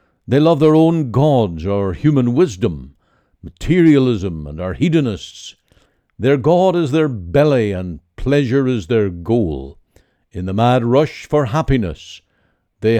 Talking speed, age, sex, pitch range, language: 135 wpm, 60-79, male, 100-140 Hz, English